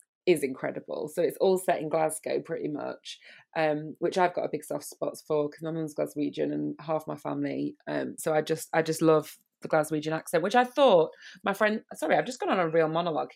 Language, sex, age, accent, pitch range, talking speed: English, female, 20-39, British, 155-185 Hz, 225 wpm